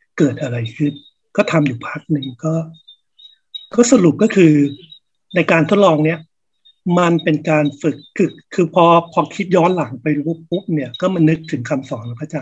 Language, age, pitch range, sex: Thai, 60-79, 145-180 Hz, male